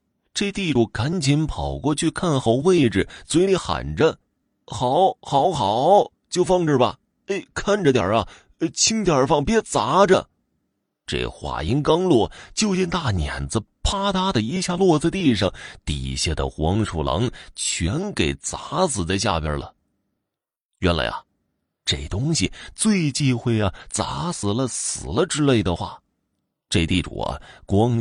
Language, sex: Chinese, male